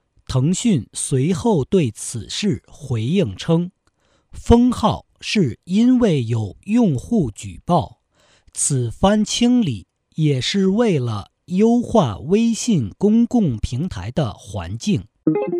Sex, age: male, 50-69